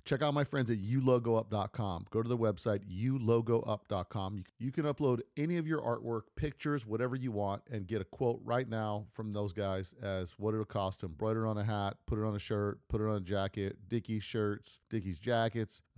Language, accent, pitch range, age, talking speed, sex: English, American, 95-115 Hz, 40-59, 205 wpm, male